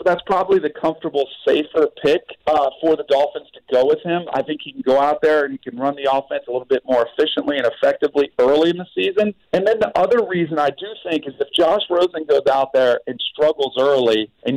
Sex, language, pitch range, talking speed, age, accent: male, English, 130-165 Hz, 240 wpm, 40-59, American